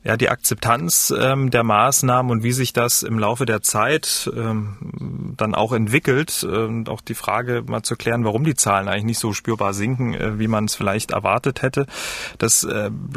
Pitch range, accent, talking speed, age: 110-135 Hz, German, 190 wpm, 30-49